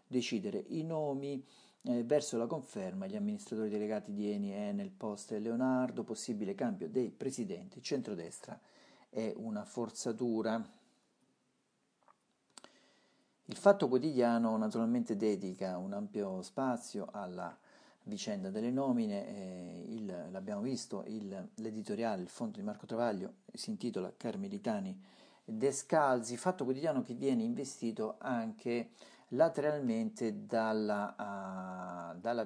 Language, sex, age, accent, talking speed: Italian, male, 50-69, native, 115 wpm